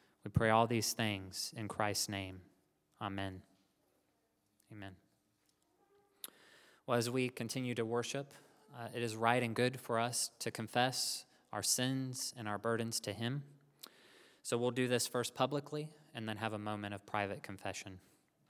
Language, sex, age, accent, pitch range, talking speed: English, male, 20-39, American, 105-125 Hz, 150 wpm